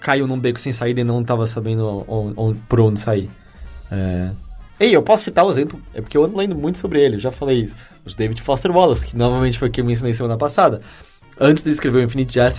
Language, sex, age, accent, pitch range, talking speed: English, male, 20-39, Brazilian, 115-135 Hz, 250 wpm